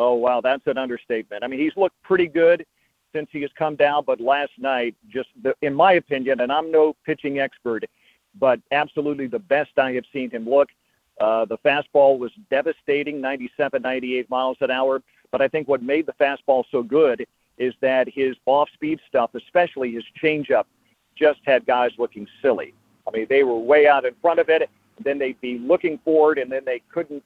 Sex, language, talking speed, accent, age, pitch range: male, English, 195 wpm, American, 50-69, 130-155 Hz